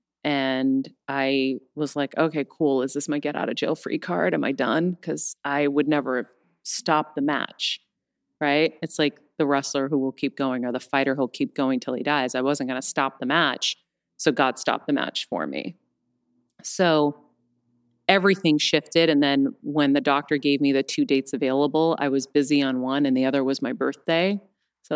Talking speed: 200 wpm